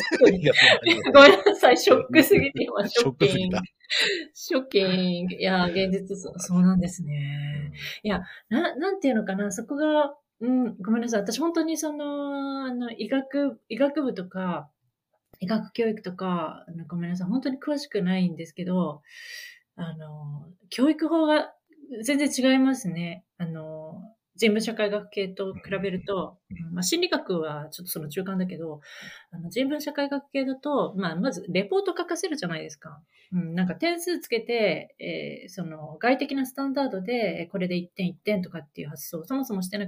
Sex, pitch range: female, 180-280 Hz